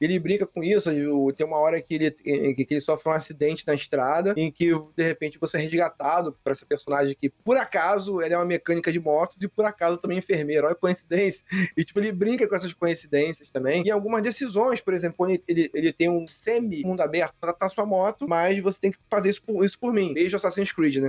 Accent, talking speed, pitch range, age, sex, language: Brazilian, 235 wpm, 160-210 Hz, 20-39, male, Portuguese